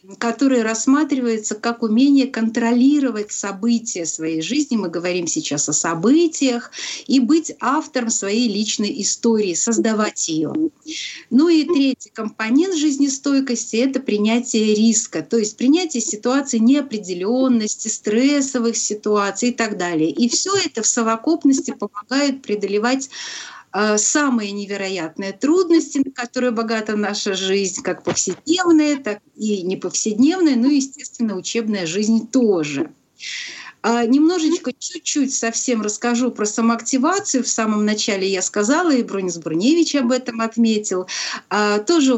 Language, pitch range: Russian, 210-270 Hz